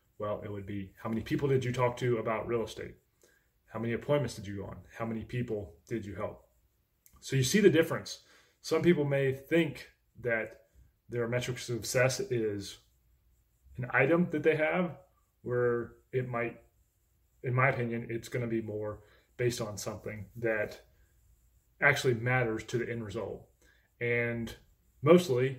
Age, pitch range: 20-39, 110-130 Hz